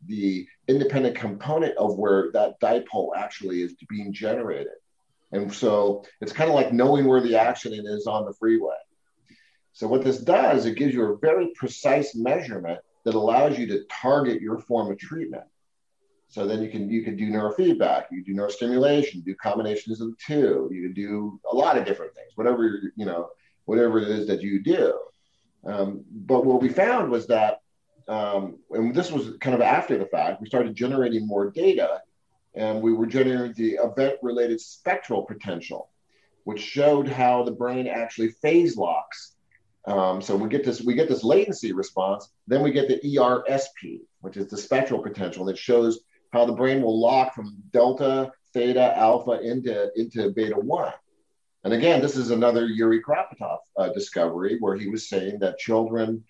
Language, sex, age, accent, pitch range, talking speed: English, male, 30-49, American, 105-135 Hz, 180 wpm